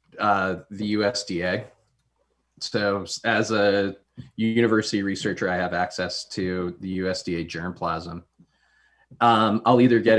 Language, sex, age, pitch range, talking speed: English, male, 20-39, 95-120 Hz, 110 wpm